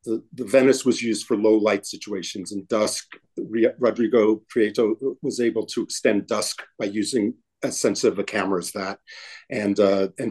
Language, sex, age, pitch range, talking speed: English, male, 50-69, 105-125 Hz, 170 wpm